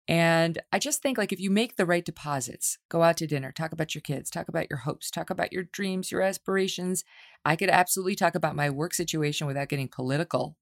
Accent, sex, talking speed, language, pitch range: American, female, 225 wpm, English, 135-185 Hz